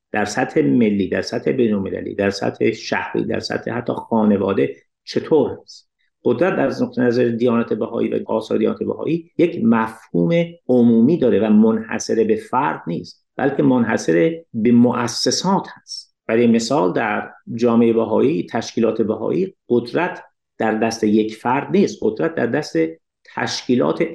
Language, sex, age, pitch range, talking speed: Persian, male, 50-69, 110-150 Hz, 135 wpm